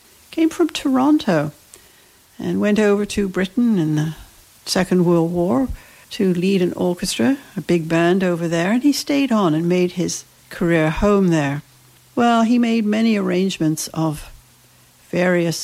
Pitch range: 165-220 Hz